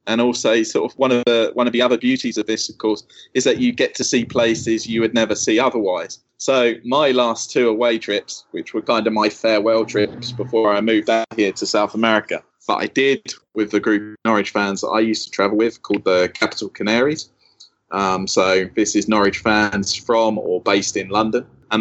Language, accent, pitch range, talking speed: English, British, 105-115 Hz, 215 wpm